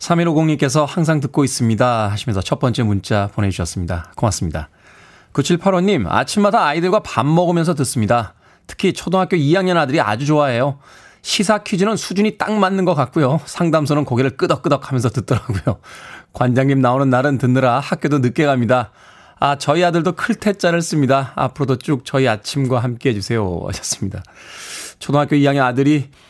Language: Korean